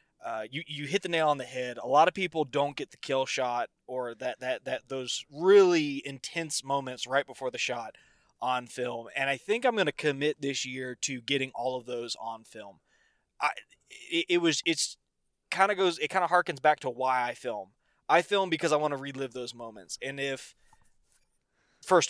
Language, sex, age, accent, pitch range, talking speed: English, male, 20-39, American, 130-165 Hz, 210 wpm